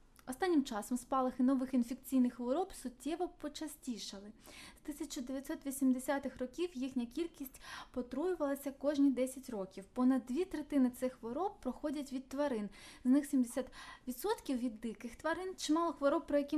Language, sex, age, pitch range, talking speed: Ukrainian, female, 20-39, 245-290 Hz, 125 wpm